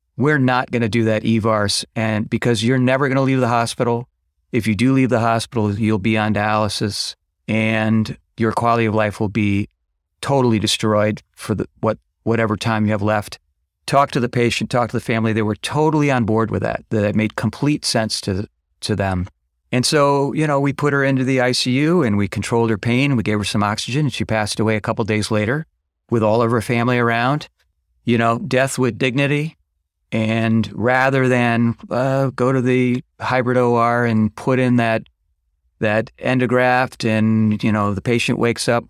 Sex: male